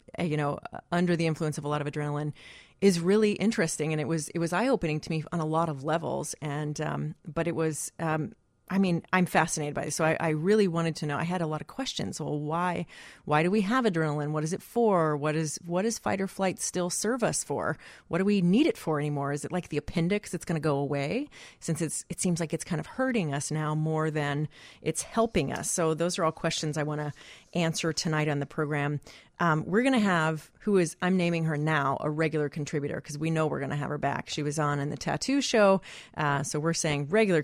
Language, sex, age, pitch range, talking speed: English, female, 30-49, 150-175 Hz, 245 wpm